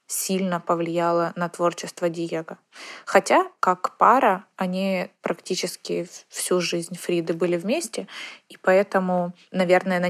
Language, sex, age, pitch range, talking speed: Ukrainian, female, 20-39, 175-195 Hz, 115 wpm